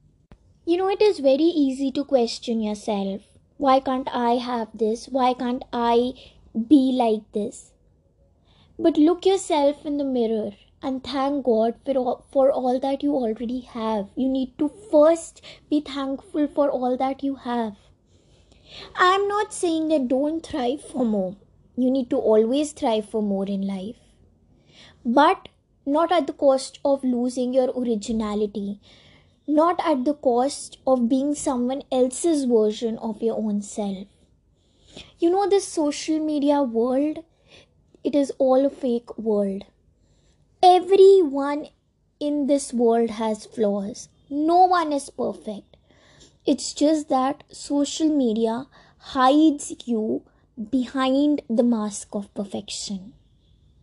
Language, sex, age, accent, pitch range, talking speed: English, female, 20-39, Indian, 230-295 Hz, 135 wpm